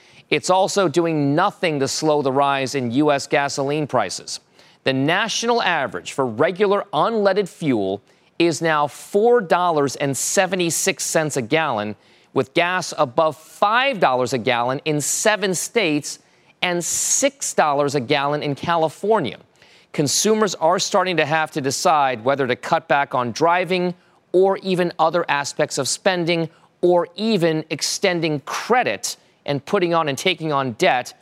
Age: 40-59